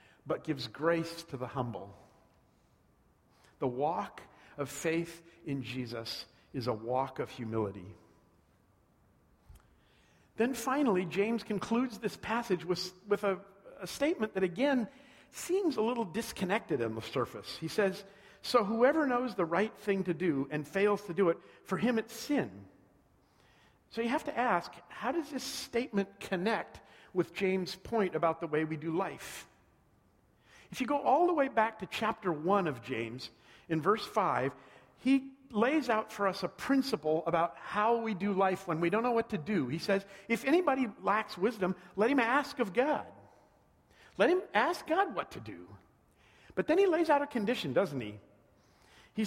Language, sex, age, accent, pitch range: Japanese, male, 50-69, American, 160-235 Hz